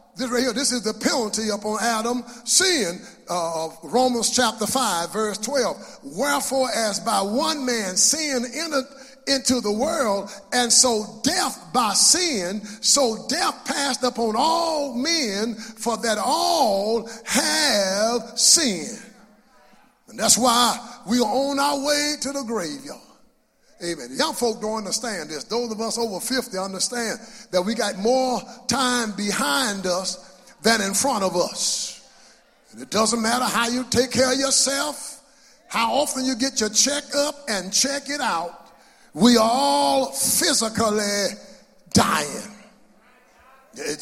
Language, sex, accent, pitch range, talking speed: English, male, American, 215-275 Hz, 140 wpm